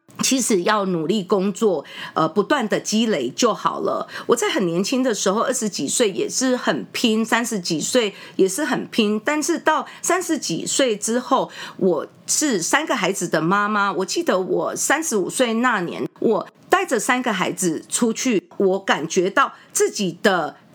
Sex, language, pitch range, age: female, English, 200-285 Hz, 40-59